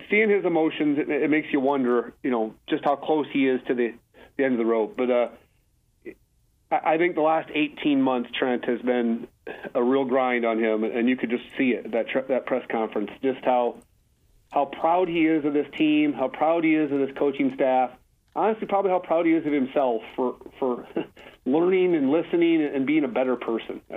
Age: 40-59